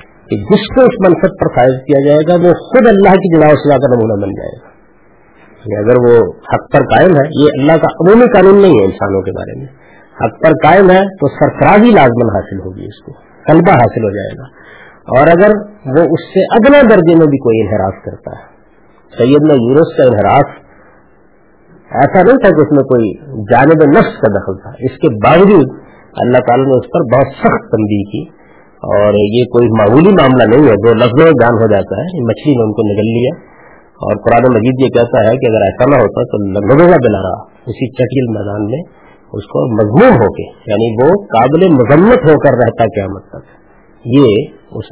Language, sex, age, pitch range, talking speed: Urdu, male, 50-69, 115-170 Hz, 200 wpm